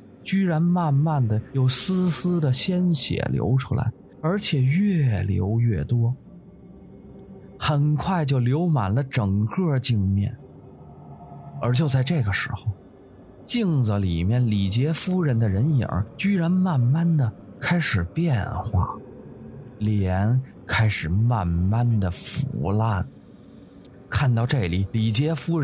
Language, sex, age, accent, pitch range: English, male, 20-39, Chinese, 105-150 Hz